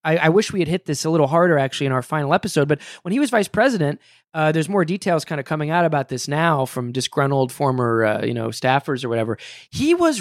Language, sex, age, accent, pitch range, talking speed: English, male, 20-39, American, 135-175 Hz, 255 wpm